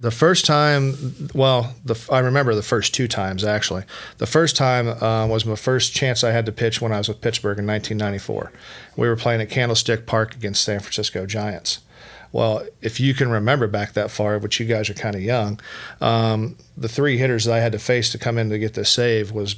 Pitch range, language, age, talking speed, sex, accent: 110-125 Hz, English, 40-59, 220 wpm, male, American